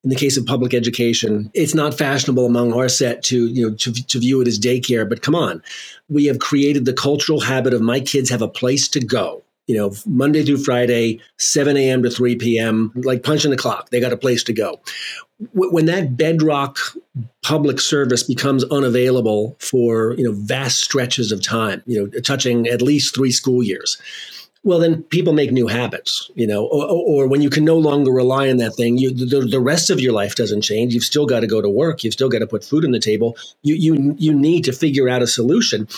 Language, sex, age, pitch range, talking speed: English, male, 40-59, 120-145 Hz, 220 wpm